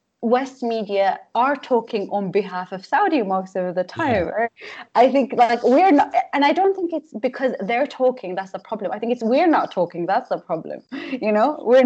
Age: 20-39